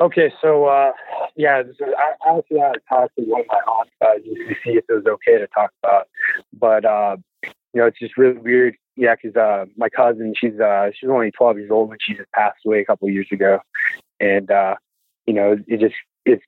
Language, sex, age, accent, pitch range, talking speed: English, male, 20-39, American, 115-135 Hz, 220 wpm